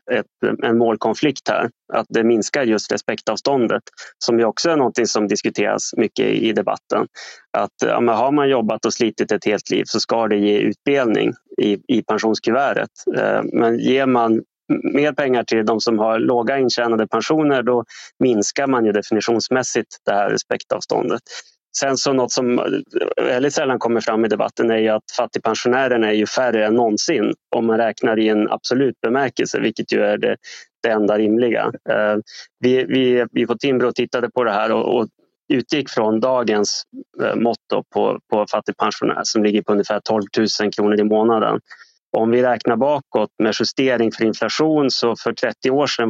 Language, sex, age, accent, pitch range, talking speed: Swedish, male, 20-39, native, 110-125 Hz, 170 wpm